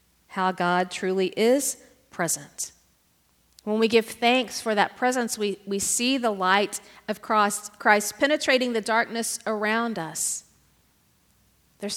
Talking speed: 125 wpm